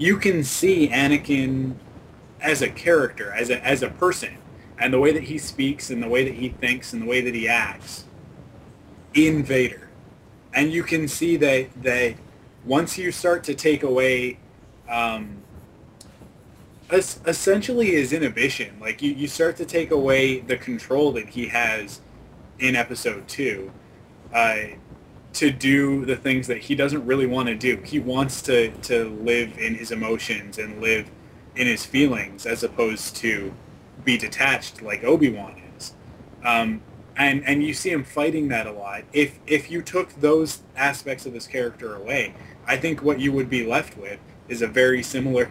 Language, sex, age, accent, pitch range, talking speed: English, male, 20-39, American, 115-145 Hz, 170 wpm